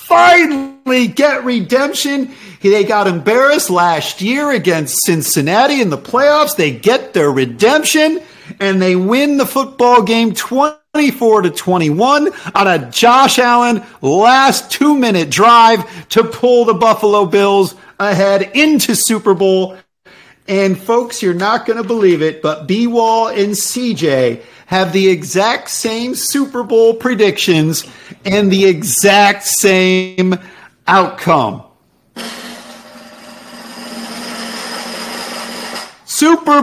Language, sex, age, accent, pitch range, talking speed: English, male, 50-69, American, 190-275 Hz, 110 wpm